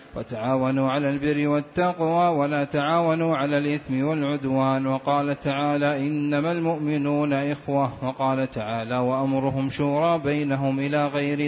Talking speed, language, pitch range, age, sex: 110 wpm, Arabic, 140-165 Hz, 30-49, male